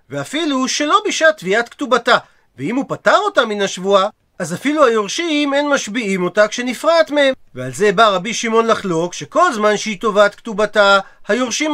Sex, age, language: male, 40-59, Hebrew